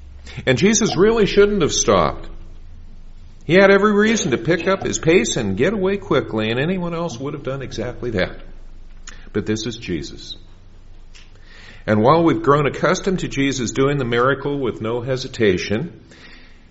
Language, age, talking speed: English, 50-69, 160 wpm